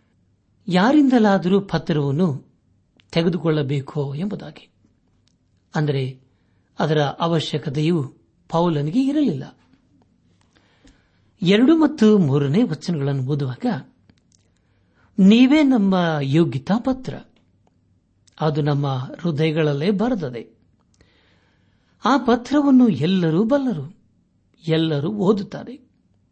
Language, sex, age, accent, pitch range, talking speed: Kannada, male, 60-79, native, 130-195 Hz, 60 wpm